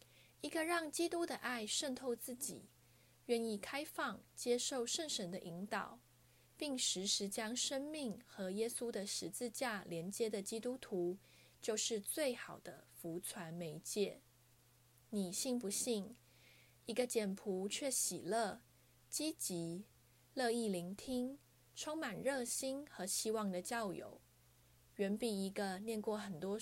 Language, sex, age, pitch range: Chinese, female, 20-39, 180-245 Hz